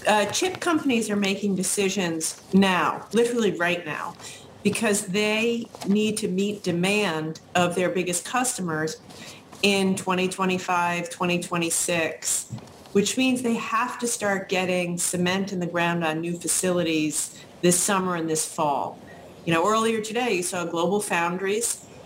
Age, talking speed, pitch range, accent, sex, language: 40-59, 135 wpm, 175-205 Hz, American, female, English